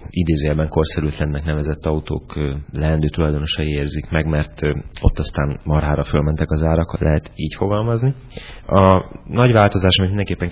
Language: Hungarian